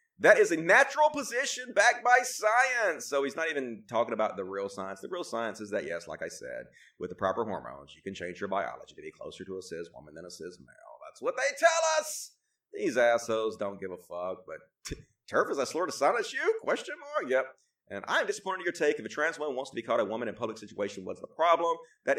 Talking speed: 250 wpm